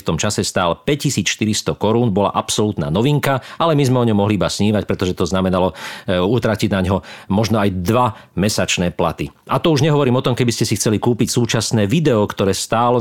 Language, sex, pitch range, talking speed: Slovak, male, 95-125 Hz, 200 wpm